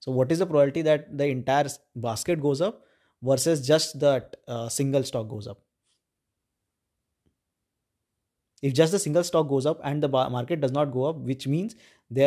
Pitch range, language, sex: 130-165 Hz, English, male